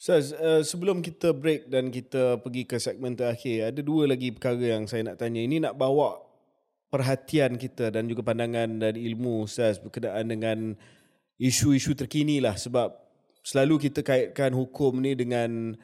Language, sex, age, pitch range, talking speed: Malay, male, 20-39, 115-135 Hz, 165 wpm